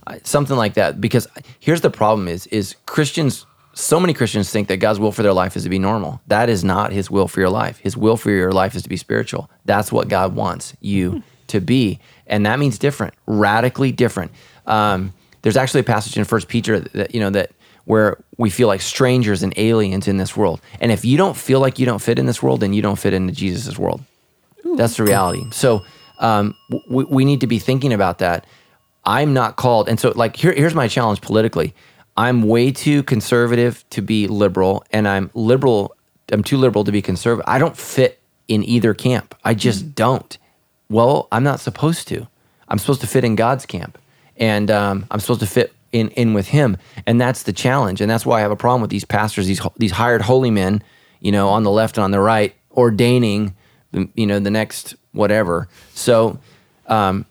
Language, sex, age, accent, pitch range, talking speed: English, male, 20-39, American, 100-125 Hz, 210 wpm